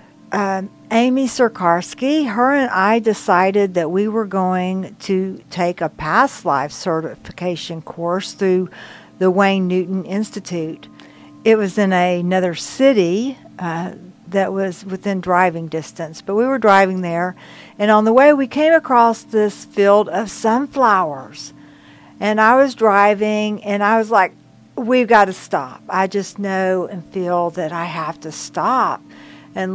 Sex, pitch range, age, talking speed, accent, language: female, 180-215 Hz, 60-79, 145 wpm, American, English